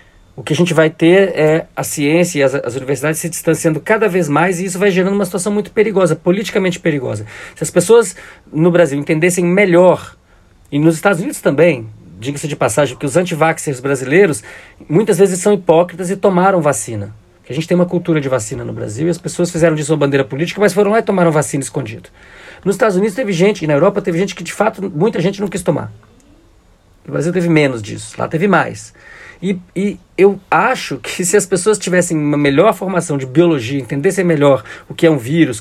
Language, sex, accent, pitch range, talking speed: Portuguese, male, Brazilian, 140-190 Hz, 210 wpm